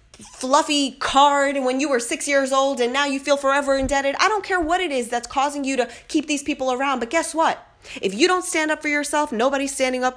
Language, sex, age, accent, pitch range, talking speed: English, female, 30-49, American, 220-280 Hz, 250 wpm